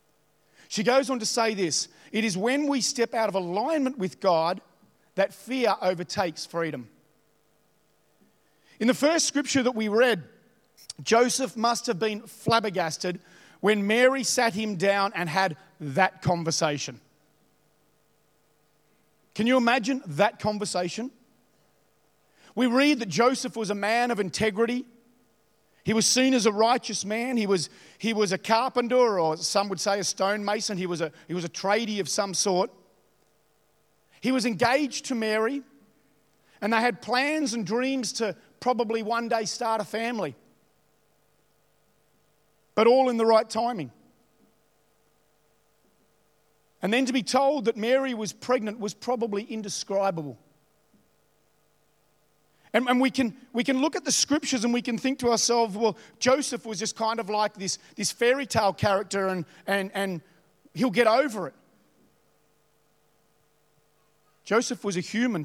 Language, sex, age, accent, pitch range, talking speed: English, male, 40-59, Australian, 195-245 Hz, 145 wpm